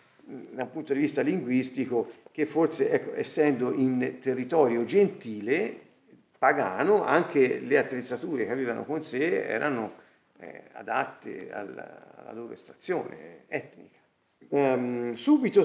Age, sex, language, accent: 50-69, male, Italian, native